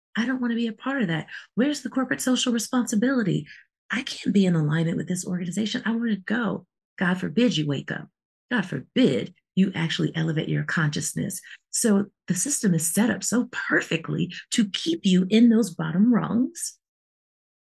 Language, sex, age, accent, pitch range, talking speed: English, female, 30-49, American, 165-220 Hz, 180 wpm